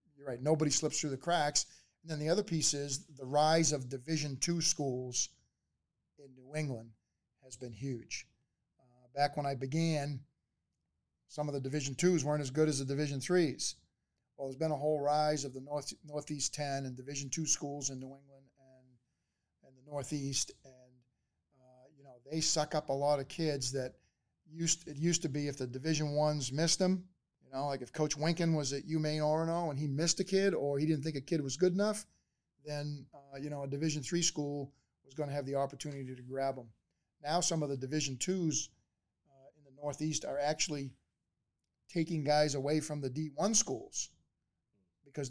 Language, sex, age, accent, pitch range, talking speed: English, male, 40-59, American, 135-155 Hz, 200 wpm